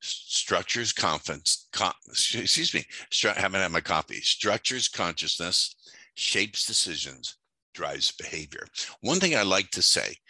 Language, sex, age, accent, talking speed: English, male, 60-79, American, 115 wpm